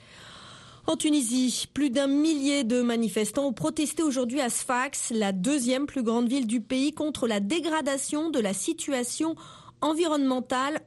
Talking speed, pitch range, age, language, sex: 145 wpm, 200-285 Hz, 30-49, Italian, female